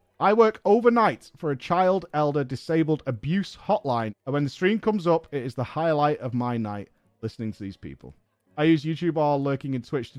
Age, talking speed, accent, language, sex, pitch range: 30-49, 205 wpm, British, English, male, 125-185 Hz